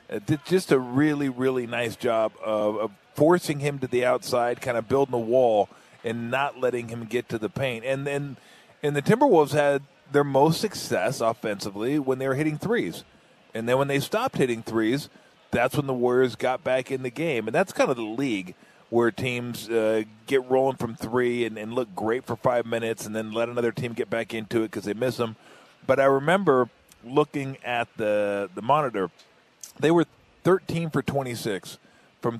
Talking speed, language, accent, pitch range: 195 wpm, English, American, 110-140 Hz